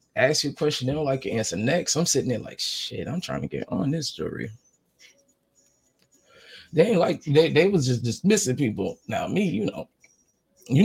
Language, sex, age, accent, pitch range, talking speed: English, male, 20-39, American, 120-175 Hz, 200 wpm